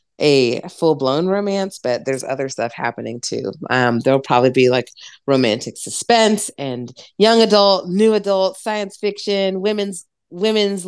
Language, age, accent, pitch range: English, 30-49, American, 145-205 Hz